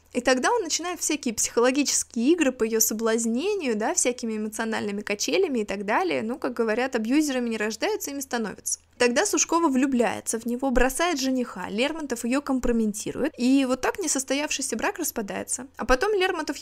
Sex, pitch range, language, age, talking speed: female, 220-275 Hz, Russian, 20-39, 160 wpm